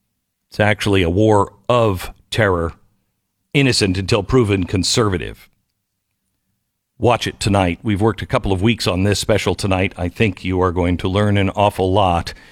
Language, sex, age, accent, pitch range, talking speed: English, male, 50-69, American, 100-130 Hz, 160 wpm